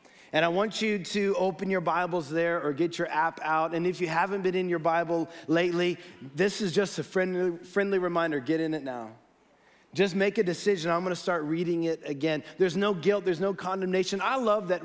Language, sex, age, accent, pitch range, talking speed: English, male, 30-49, American, 160-195 Hz, 220 wpm